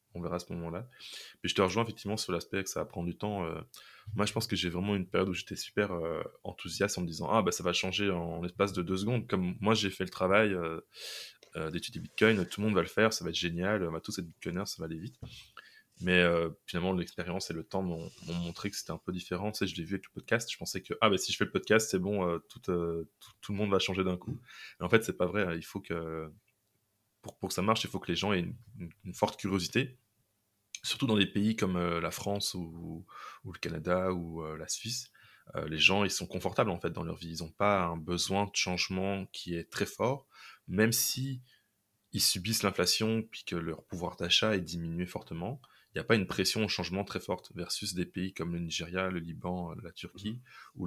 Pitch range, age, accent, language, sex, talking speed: 85-105 Hz, 20-39, French, French, male, 255 wpm